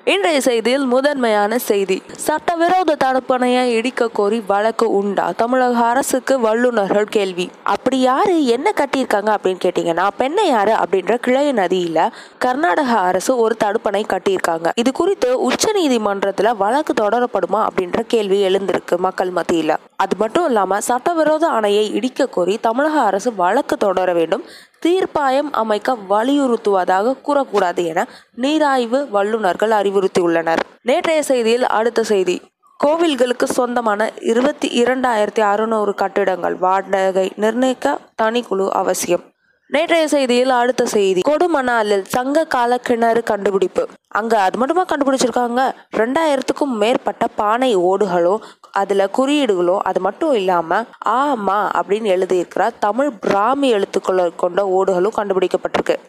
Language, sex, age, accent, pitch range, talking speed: Tamil, female, 20-39, native, 200-275 Hz, 105 wpm